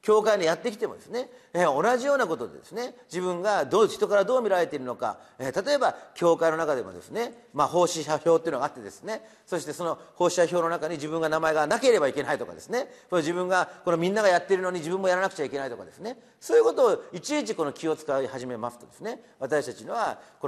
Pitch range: 155-240 Hz